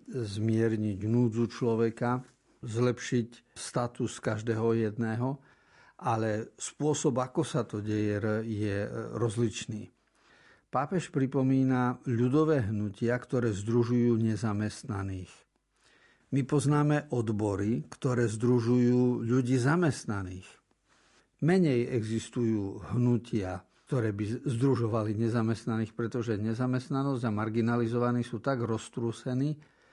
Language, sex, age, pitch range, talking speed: Slovak, male, 50-69, 110-130 Hz, 85 wpm